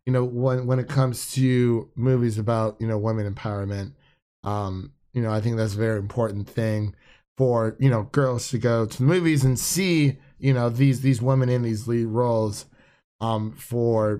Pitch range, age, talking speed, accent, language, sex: 110-135 Hz, 30-49, 190 wpm, American, English, male